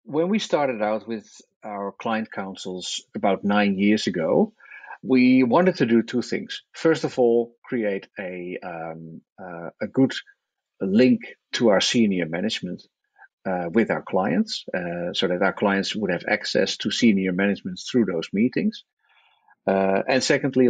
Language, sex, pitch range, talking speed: English, male, 100-130 Hz, 155 wpm